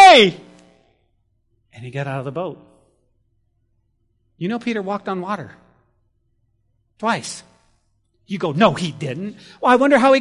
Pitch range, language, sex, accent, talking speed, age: 110-160 Hz, English, male, American, 140 wpm, 40-59